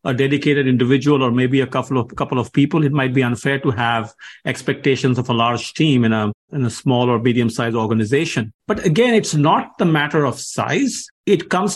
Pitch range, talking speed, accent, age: 125-160 Hz, 210 wpm, Indian, 50-69